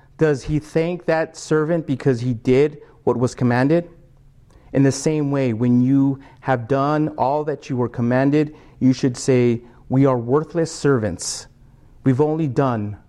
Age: 30-49